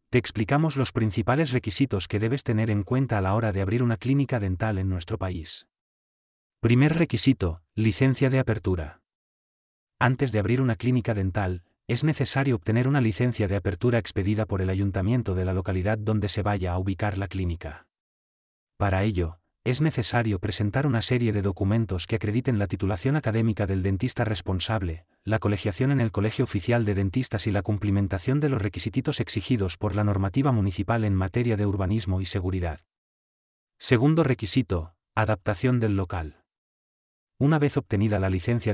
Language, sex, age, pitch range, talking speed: Spanish, male, 30-49, 95-120 Hz, 165 wpm